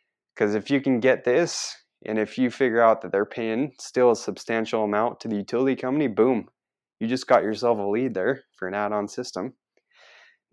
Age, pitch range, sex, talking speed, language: 20-39, 105-120 Hz, male, 200 wpm, English